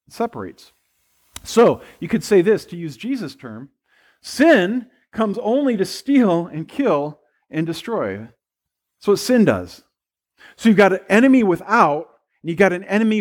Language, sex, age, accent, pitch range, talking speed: English, male, 40-59, American, 150-215 Hz, 160 wpm